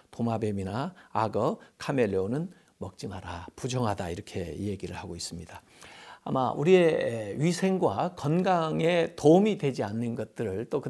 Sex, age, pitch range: male, 50-69, 110-170 Hz